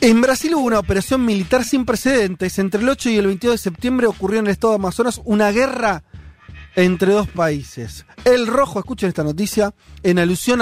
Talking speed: 190 wpm